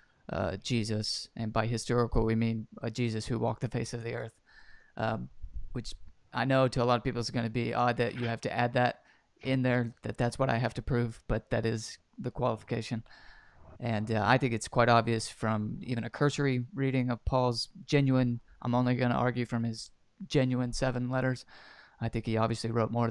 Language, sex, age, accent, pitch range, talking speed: English, male, 20-39, American, 115-125 Hz, 210 wpm